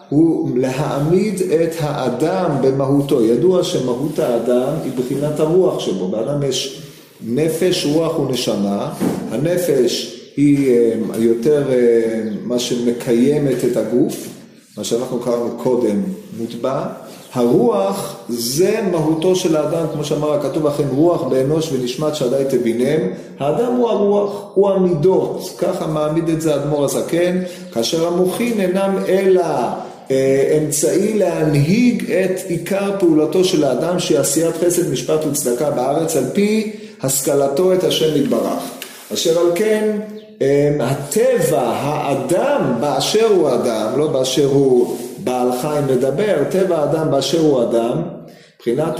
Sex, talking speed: male, 120 wpm